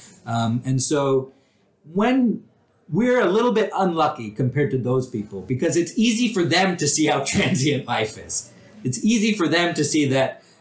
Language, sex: English, male